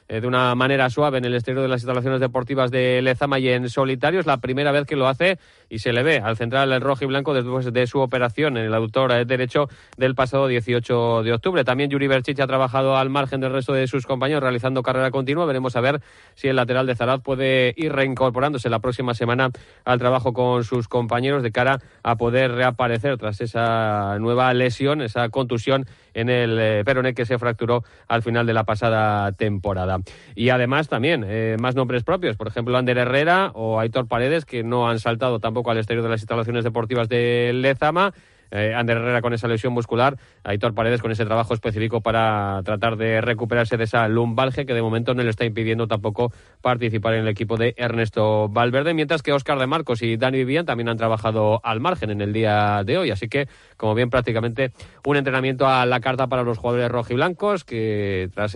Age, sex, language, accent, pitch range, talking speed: 30-49, male, Spanish, Spanish, 115-130 Hz, 205 wpm